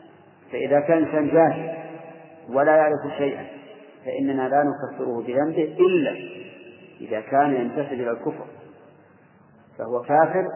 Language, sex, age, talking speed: Arabic, male, 50-69, 110 wpm